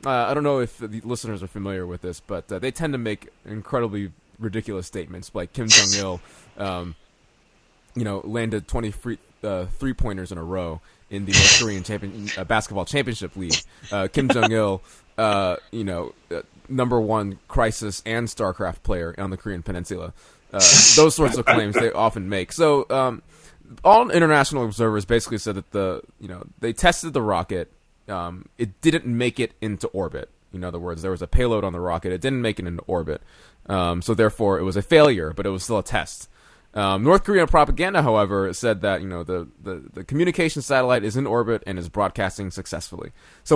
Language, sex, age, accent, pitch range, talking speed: English, male, 20-39, American, 95-125 Hz, 195 wpm